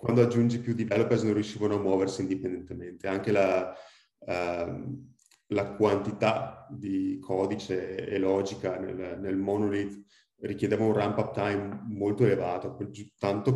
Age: 30-49